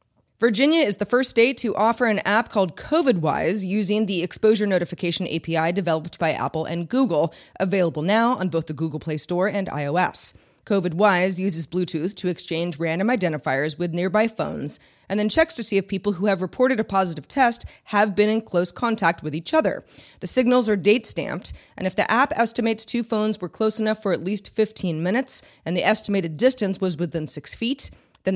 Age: 30-49